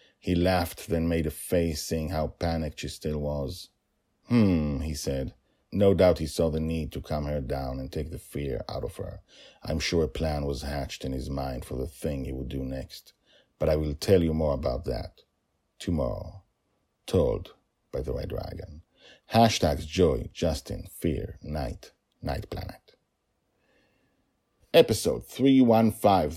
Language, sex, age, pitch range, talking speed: English, male, 50-69, 75-95 Hz, 160 wpm